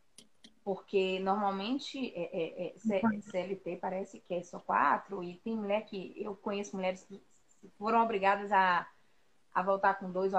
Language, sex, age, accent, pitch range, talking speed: Portuguese, female, 20-39, Brazilian, 195-255 Hz, 140 wpm